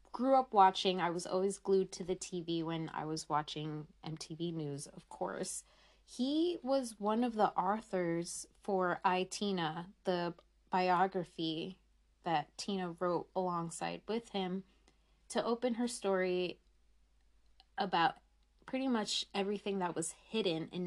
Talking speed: 135 wpm